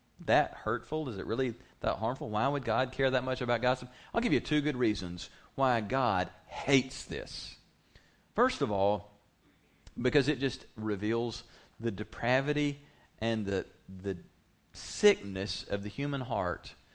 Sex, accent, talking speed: male, American, 150 wpm